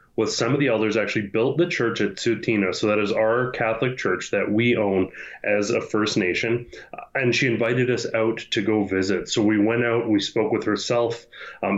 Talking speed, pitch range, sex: 210 wpm, 105-120 Hz, male